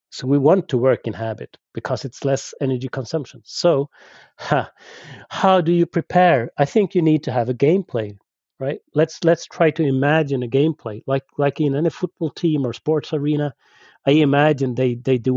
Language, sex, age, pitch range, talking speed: English, male, 30-49, 125-160 Hz, 185 wpm